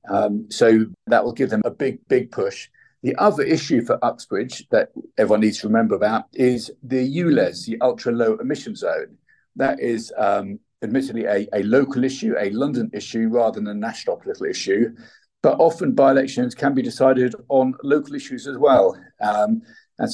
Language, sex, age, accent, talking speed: English, male, 50-69, British, 175 wpm